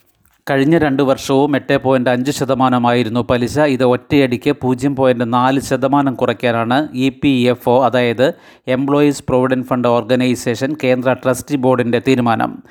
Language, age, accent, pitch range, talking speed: Malayalam, 30-49, native, 125-140 Hz, 130 wpm